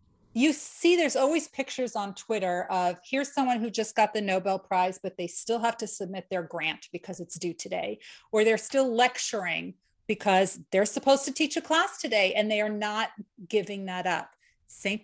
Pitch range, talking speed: 185-245 Hz, 190 wpm